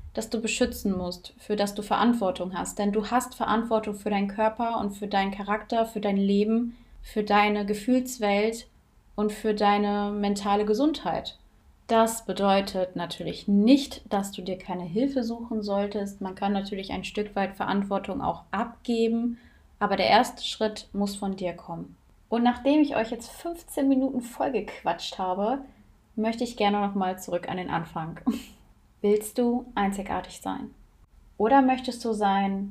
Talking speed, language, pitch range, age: 155 wpm, German, 190-225 Hz, 20-39